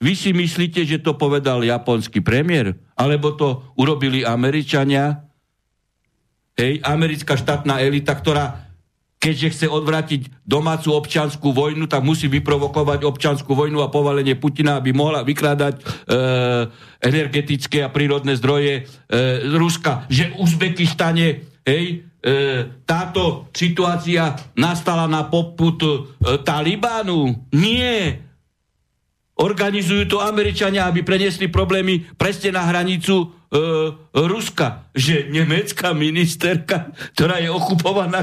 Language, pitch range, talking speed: Slovak, 140-180 Hz, 110 wpm